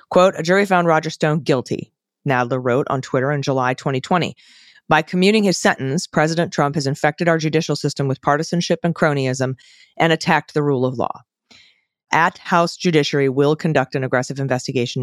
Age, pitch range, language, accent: 30-49, 140-175 Hz, English, American